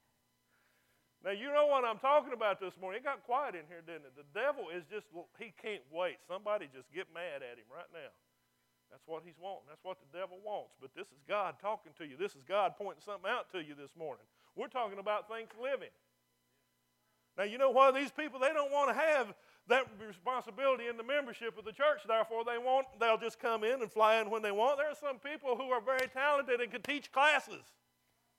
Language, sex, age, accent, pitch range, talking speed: English, male, 50-69, American, 185-275 Hz, 220 wpm